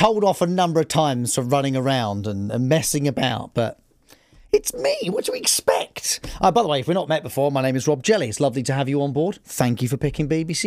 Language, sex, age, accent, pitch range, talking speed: Tamil, male, 40-59, British, 135-195 Hz, 255 wpm